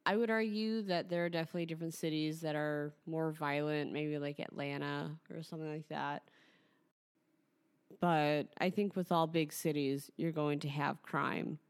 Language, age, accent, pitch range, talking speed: English, 30-49, American, 145-160 Hz, 165 wpm